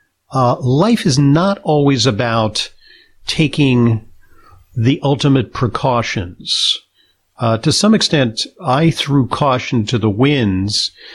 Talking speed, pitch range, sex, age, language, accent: 110 wpm, 105-130 Hz, male, 50-69, English, American